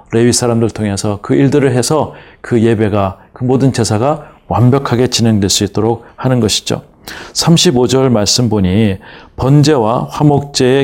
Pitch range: 110-140 Hz